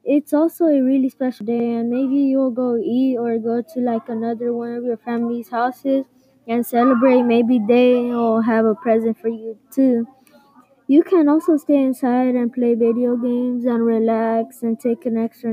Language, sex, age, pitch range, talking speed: English, female, 20-39, 225-260 Hz, 180 wpm